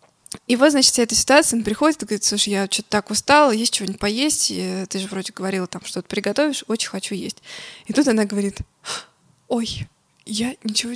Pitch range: 195-240 Hz